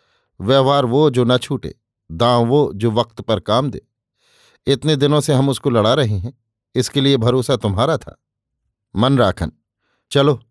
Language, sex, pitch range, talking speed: Hindi, male, 110-135 Hz, 155 wpm